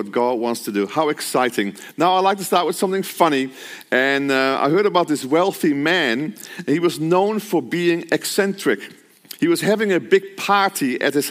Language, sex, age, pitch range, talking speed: English, male, 50-69, 160-210 Hz, 190 wpm